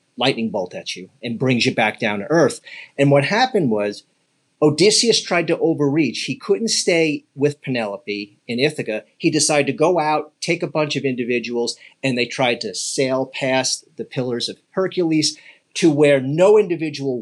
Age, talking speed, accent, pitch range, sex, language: 40-59, 175 wpm, American, 115-150 Hz, male, English